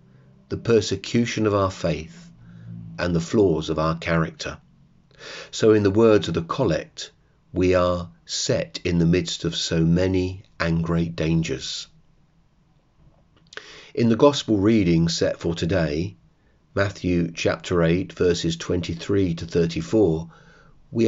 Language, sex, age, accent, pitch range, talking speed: English, male, 40-59, British, 85-115 Hz, 130 wpm